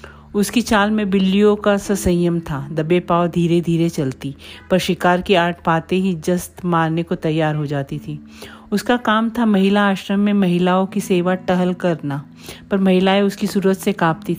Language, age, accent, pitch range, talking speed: Hindi, 40-59, native, 175-195 Hz, 170 wpm